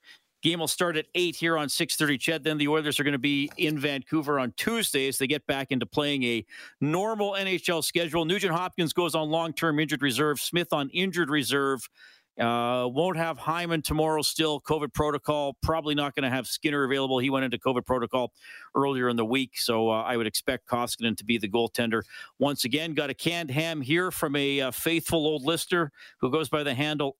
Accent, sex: American, male